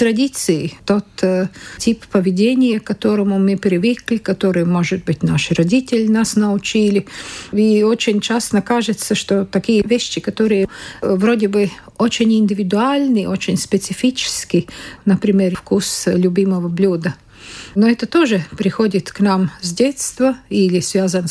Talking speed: 125 wpm